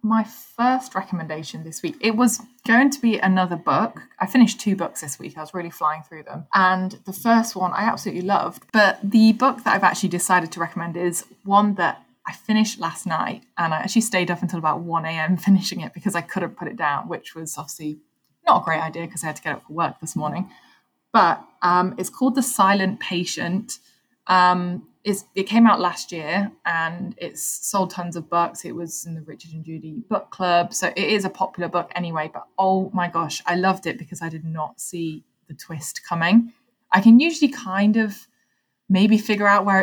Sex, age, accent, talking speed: female, 20-39, British, 210 wpm